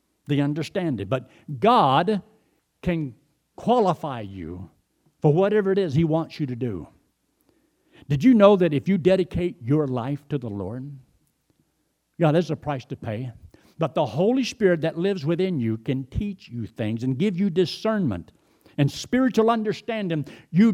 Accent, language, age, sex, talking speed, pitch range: American, English, 60-79, male, 155 wpm, 145-225 Hz